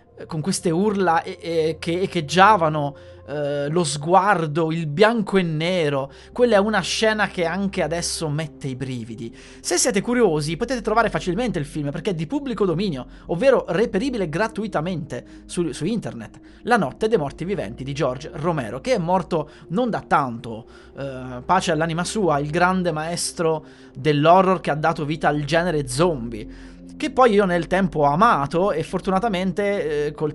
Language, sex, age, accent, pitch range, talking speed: Italian, male, 20-39, native, 145-190 Hz, 160 wpm